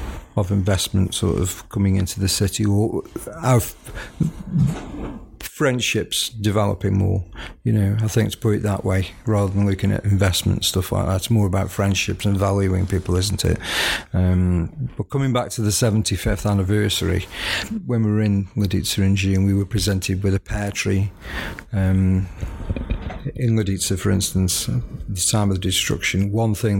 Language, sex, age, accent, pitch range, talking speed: English, male, 50-69, British, 95-105 Hz, 165 wpm